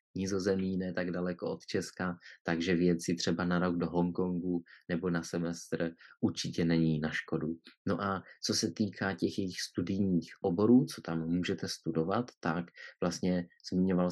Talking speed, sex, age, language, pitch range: 155 wpm, male, 30-49, Czech, 85-95 Hz